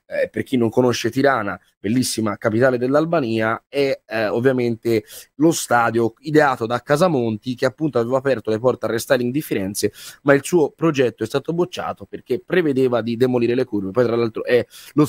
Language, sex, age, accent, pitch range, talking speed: Italian, male, 20-39, native, 115-150 Hz, 180 wpm